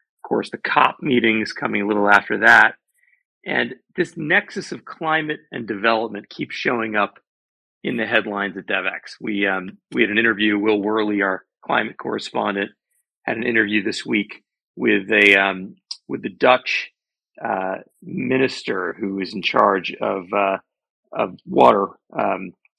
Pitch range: 105-150 Hz